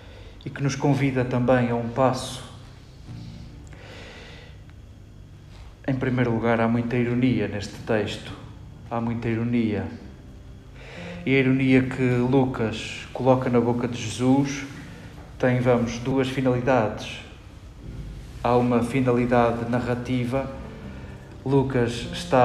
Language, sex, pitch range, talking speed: Portuguese, male, 115-135 Hz, 105 wpm